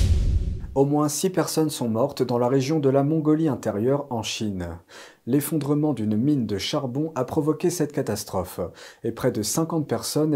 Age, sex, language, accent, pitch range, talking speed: 40-59, male, French, French, 115-155 Hz, 170 wpm